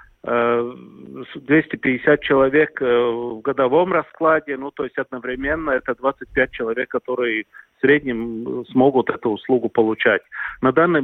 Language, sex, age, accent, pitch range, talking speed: Russian, male, 40-59, native, 120-145 Hz, 115 wpm